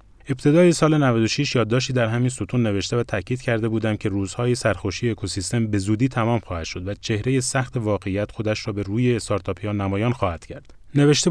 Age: 30-49